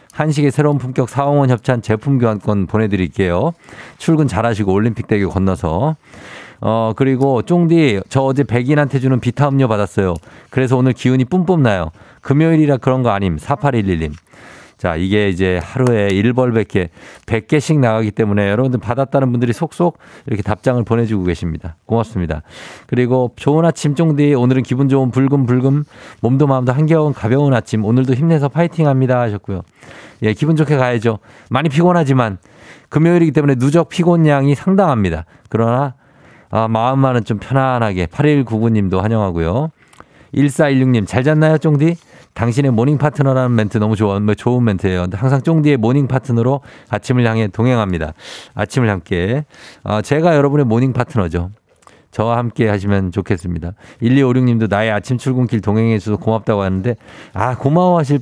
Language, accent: Korean, native